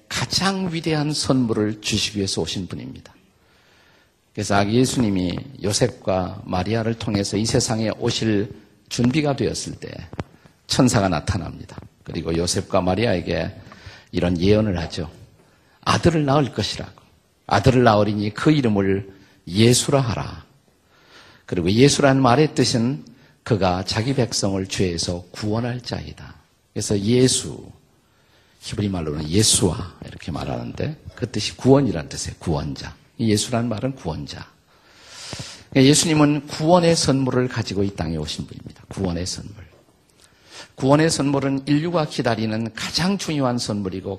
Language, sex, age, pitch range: Korean, male, 50-69, 95-130 Hz